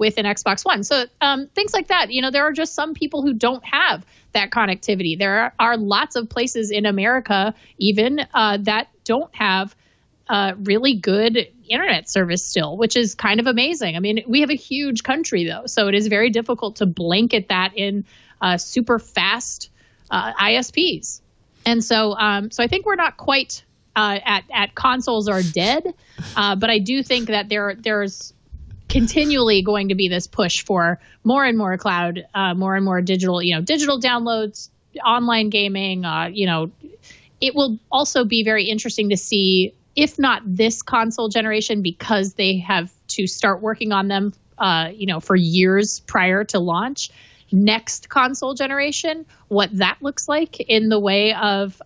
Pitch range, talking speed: 195-245 Hz, 180 wpm